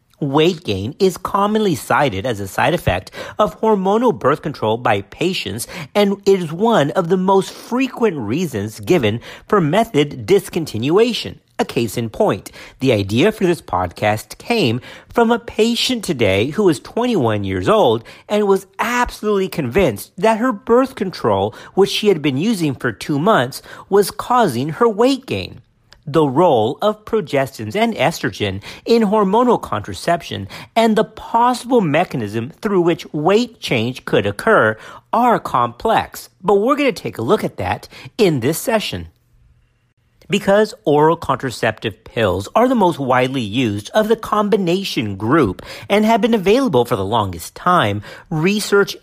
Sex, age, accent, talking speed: male, 50-69, American, 150 wpm